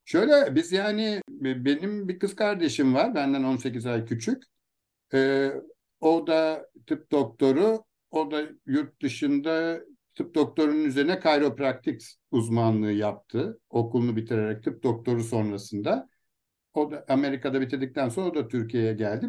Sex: male